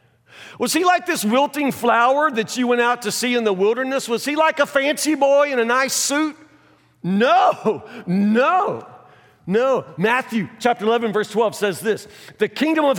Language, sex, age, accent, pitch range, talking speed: English, male, 50-69, American, 220-290 Hz, 175 wpm